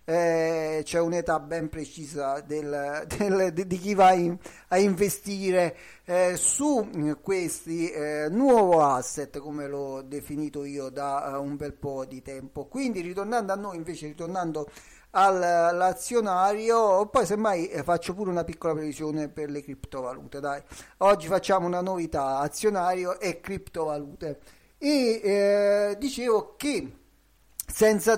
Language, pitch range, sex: Italian, 150-185 Hz, male